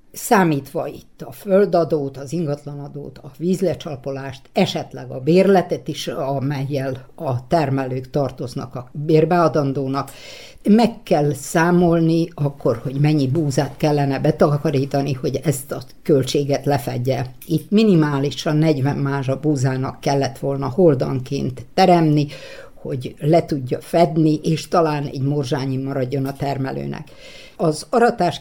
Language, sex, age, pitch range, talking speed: Hungarian, female, 60-79, 140-165 Hz, 115 wpm